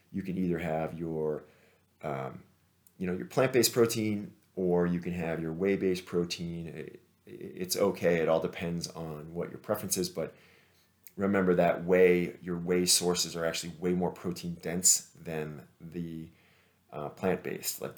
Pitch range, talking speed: 80-90 Hz, 160 wpm